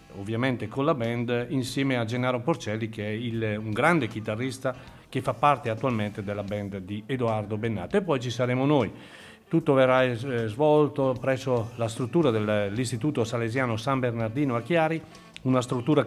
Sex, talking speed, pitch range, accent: male, 155 wpm, 115-140 Hz, native